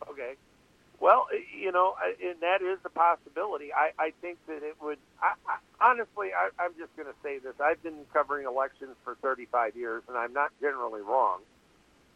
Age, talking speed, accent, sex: 50-69, 170 wpm, American, male